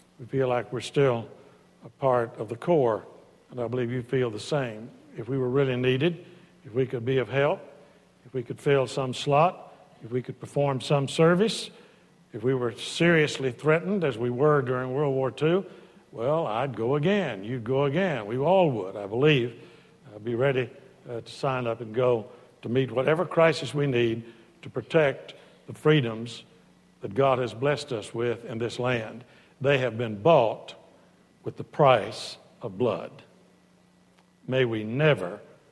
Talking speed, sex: 175 wpm, male